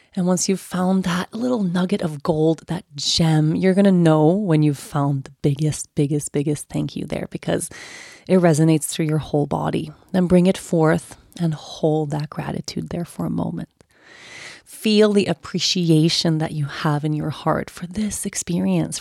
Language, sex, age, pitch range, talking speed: English, female, 30-49, 155-185 Hz, 175 wpm